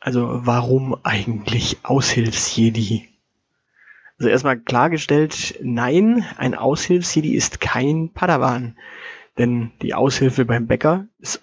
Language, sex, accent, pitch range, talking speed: German, male, German, 115-150 Hz, 100 wpm